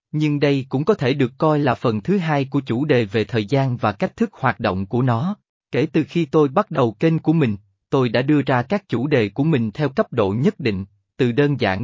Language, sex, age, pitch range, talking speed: Vietnamese, male, 20-39, 115-155 Hz, 255 wpm